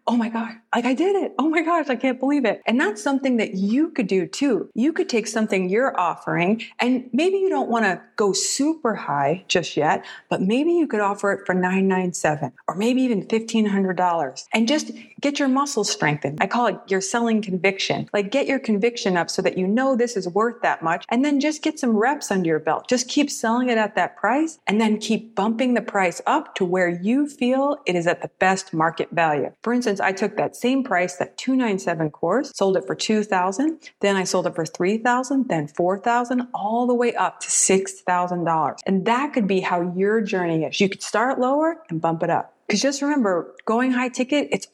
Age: 30-49